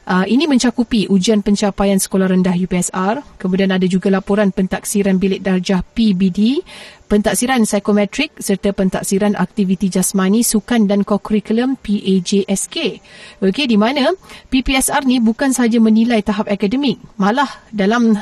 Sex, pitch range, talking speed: female, 195-225 Hz, 125 wpm